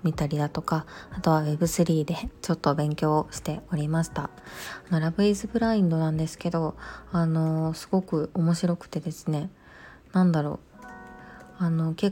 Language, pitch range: Japanese, 155-185 Hz